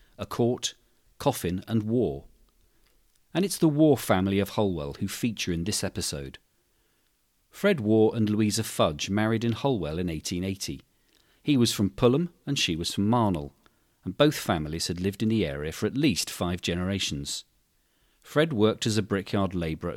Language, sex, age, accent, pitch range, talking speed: English, male, 40-59, British, 90-120 Hz, 165 wpm